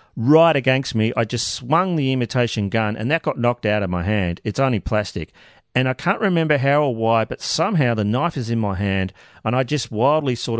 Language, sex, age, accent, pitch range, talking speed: English, male, 40-59, Australian, 105-140 Hz, 225 wpm